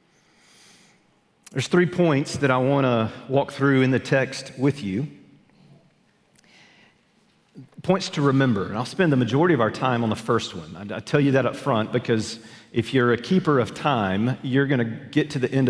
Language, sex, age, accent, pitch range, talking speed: English, male, 40-59, American, 115-160 Hz, 190 wpm